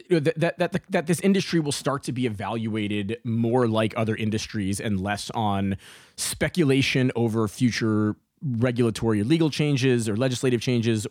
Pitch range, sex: 110-145 Hz, male